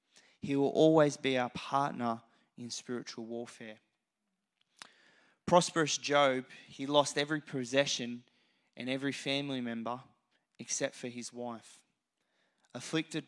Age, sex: 20-39, male